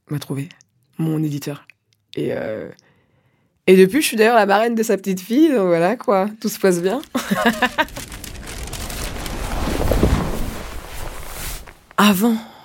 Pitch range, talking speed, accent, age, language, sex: 160-195 Hz, 115 wpm, French, 20-39, French, female